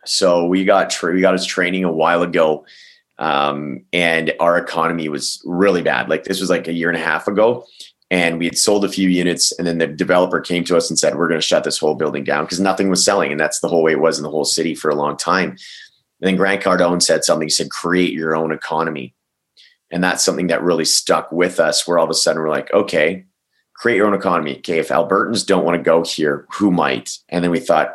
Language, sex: English, male